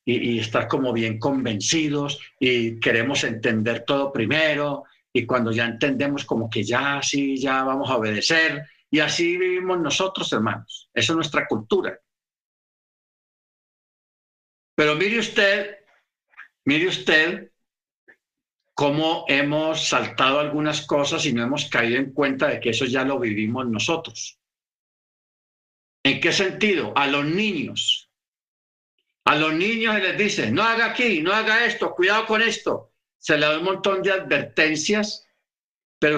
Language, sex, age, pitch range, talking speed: Spanish, male, 50-69, 120-165 Hz, 140 wpm